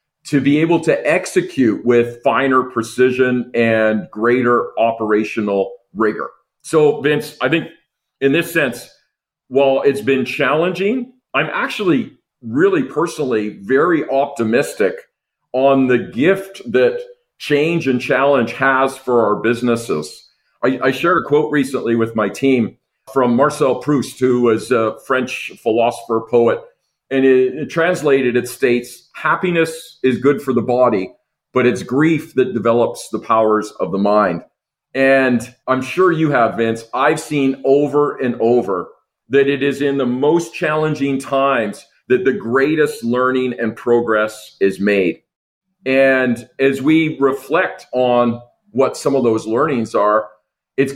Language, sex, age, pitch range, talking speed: English, male, 50-69, 120-145 Hz, 140 wpm